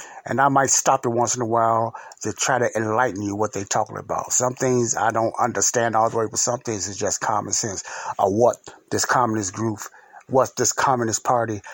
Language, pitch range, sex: English, 110-130 Hz, male